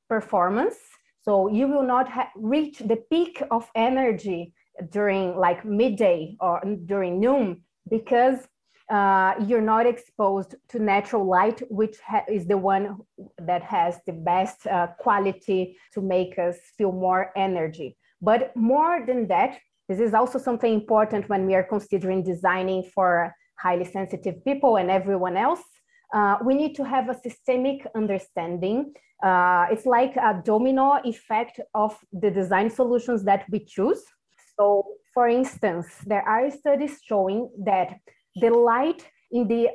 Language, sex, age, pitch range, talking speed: English, female, 20-39, 190-250 Hz, 145 wpm